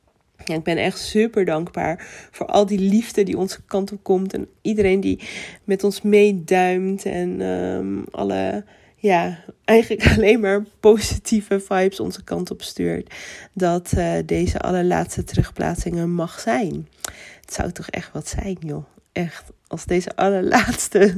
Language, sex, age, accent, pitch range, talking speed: Dutch, female, 30-49, Dutch, 155-195 Hz, 145 wpm